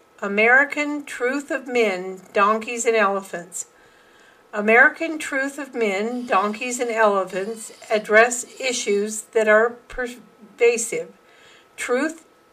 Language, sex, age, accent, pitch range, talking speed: English, female, 50-69, American, 215-260 Hz, 95 wpm